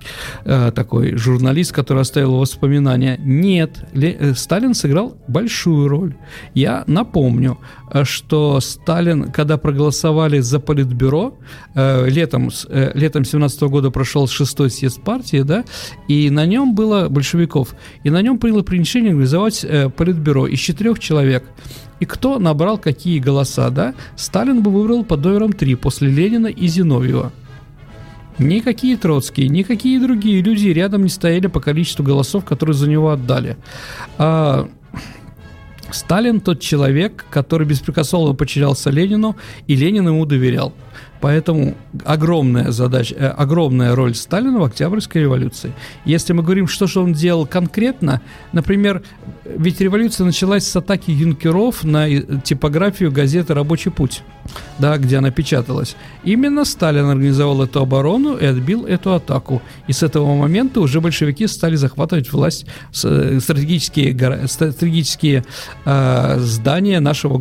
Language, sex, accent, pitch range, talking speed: Russian, male, native, 135-175 Hz, 125 wpm